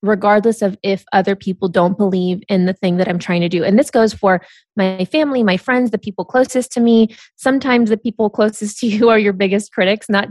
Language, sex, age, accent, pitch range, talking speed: English, female, 20-39, American, 185-215 Hz, 225 wpm